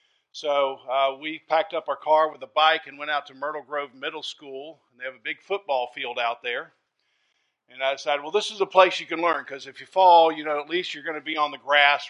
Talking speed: 265 wpm